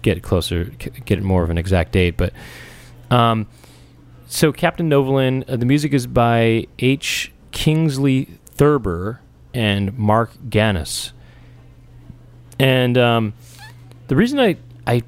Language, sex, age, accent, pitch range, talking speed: English, male, 30-49, American, 100-135 Hz, 120 wpm